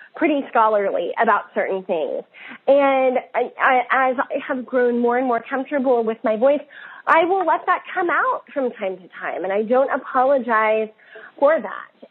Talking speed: 165 wpm